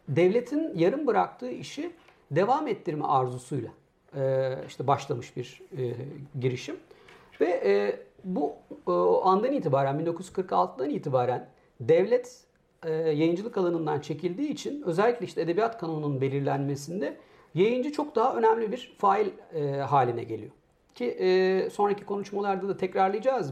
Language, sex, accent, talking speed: Turkish, male, native, 100 wpm